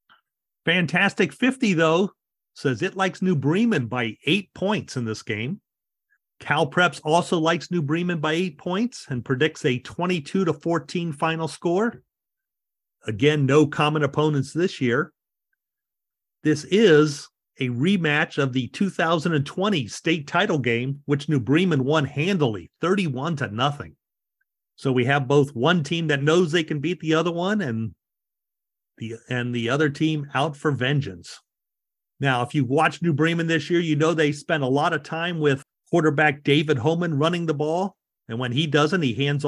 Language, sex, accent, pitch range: English, male, American, 140-170 Hz